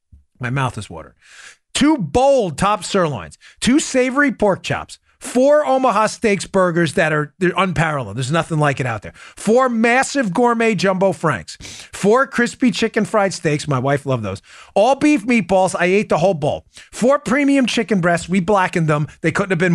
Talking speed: 175 wpm